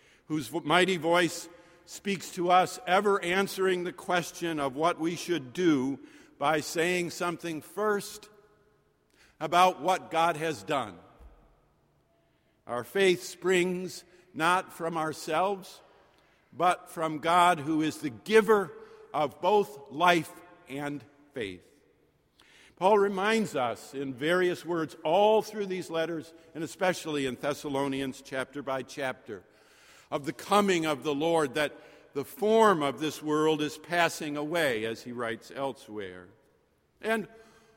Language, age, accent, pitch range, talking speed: English, 50-69, American, 150-200 Hz, 125 wpm